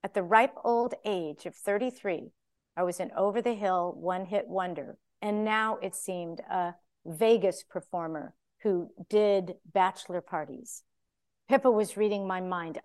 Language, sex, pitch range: English, female, 185-225 Hz